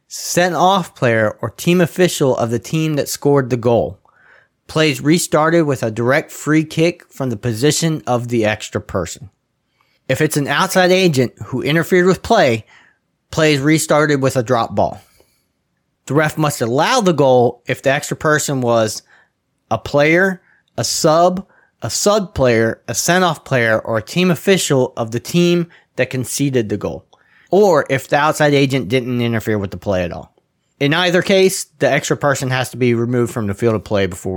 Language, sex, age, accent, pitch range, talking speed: English, male, 30-49, American, 120-165 Hz, 180 wpm